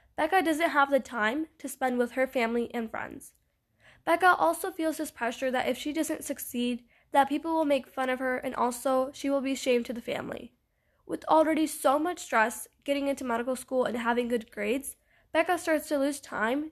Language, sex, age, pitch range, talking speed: English, female, 10-29, 235-285 Hz, 200 wpm